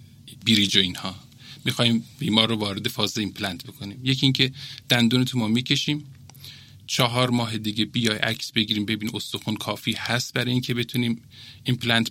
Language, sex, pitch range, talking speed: Persian, male, 110-140 Hz, 145 wpm